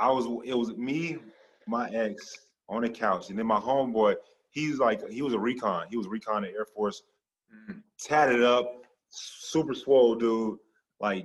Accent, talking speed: American, 175 wpm